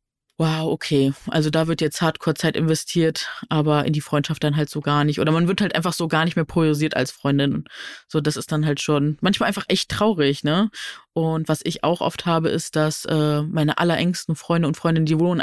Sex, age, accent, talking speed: female, 20-39, German, 220 wpm